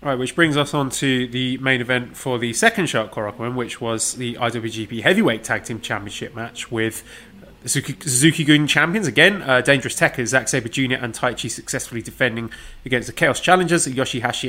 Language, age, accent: English, 20-39, British